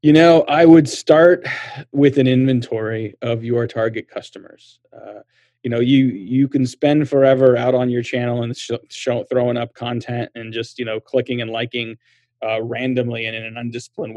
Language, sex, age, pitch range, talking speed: English, male, 30-49, 120-140 Hz, 175 wpm